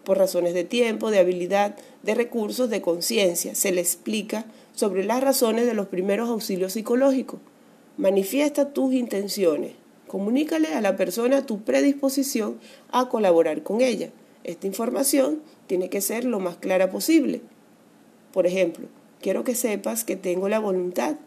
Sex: female